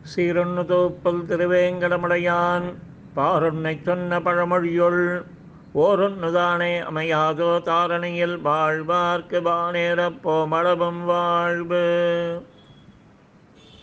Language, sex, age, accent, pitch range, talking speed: Tamil, male, 50-69, native, 170-180 Hz, 60 wpm